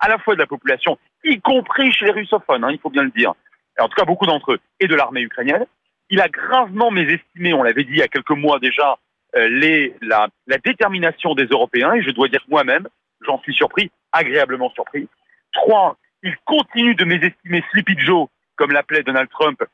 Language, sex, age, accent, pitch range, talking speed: French, male, 40-59, French, 150-220 Hz, 210 wpm